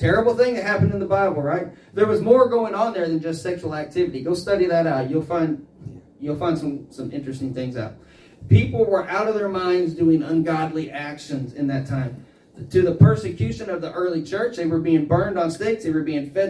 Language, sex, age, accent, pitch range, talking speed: English, male, 30-49, American, 140-180 Hz, 220 wpm